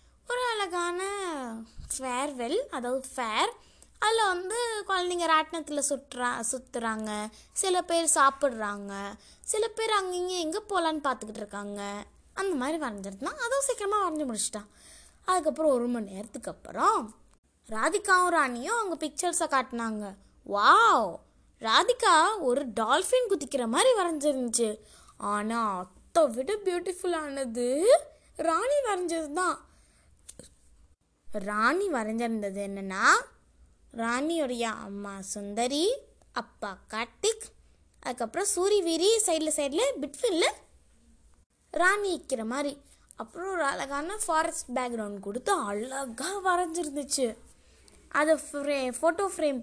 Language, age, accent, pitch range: Tamil, 20-39, native, 235-370 Hz